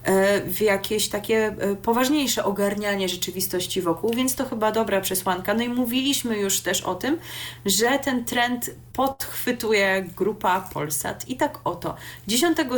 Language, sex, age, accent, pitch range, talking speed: Polish, female, 30-49, native, 185-240 Hz, 135 wpm